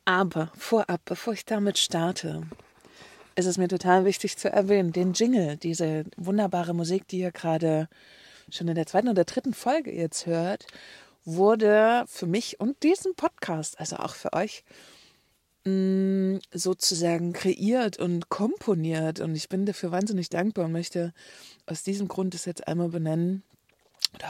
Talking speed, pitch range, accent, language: 150 wpm, 170-200 Hz, German, German